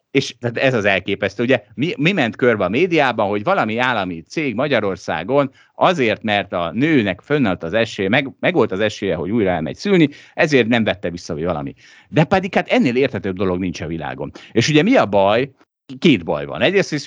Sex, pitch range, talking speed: male, 95-165 Hz, 200 wpm